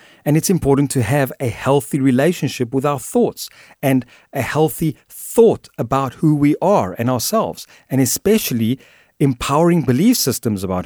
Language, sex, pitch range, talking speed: English, male, 120-160 Hz, 150 wpm